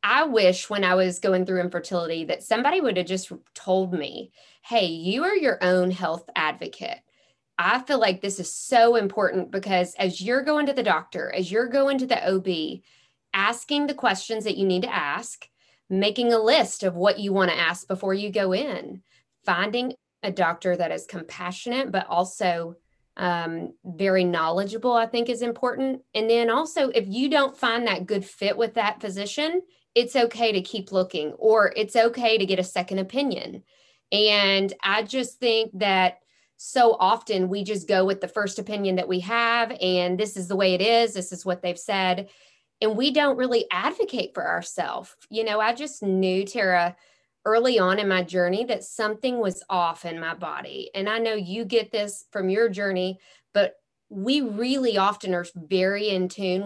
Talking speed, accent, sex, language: 185 wpm, American, female, English